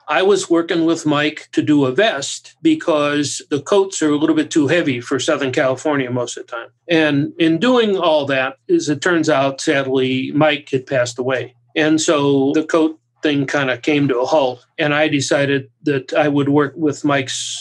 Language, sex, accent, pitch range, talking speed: English, male, American, 140-185 Hz, 200 wpm